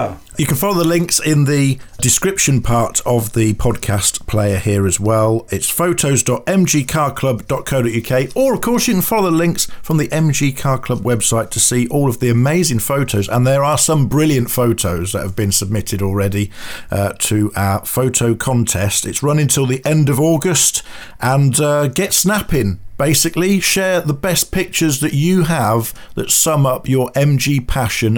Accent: British